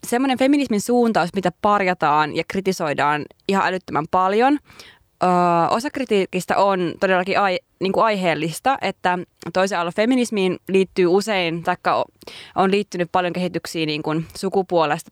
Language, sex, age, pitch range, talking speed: Finnish, female, 20-39, 170-225 Hz, 125 wpm